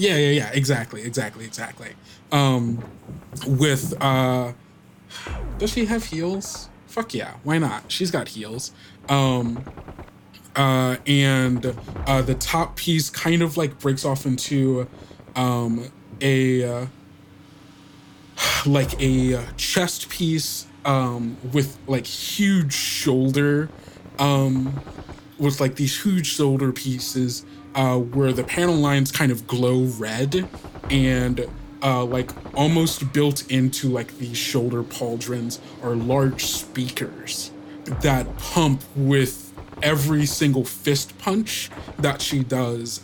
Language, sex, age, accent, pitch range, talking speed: English, male, 20-39, American, 120-140 Hz, 115 wpm